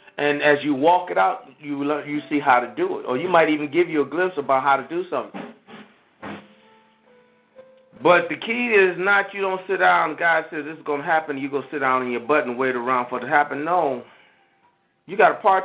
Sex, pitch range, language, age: male, 140-175 Hz, English, 40-59